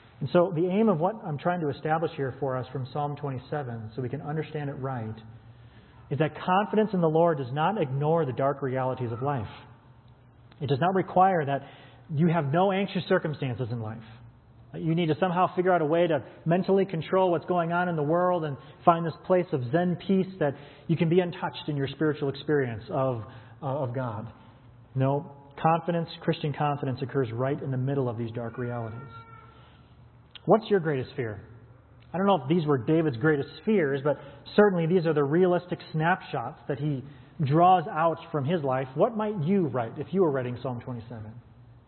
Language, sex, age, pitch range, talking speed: English, male, 30-49, 120-165 Hz, 190 wpm